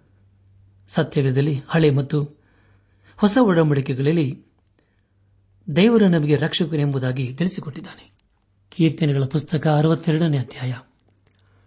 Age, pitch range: 60-79, 100-160 Hz